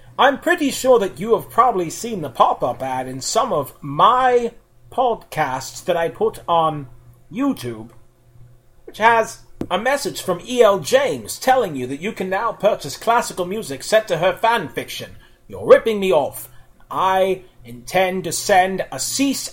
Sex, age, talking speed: male, 30-49, 160 wpm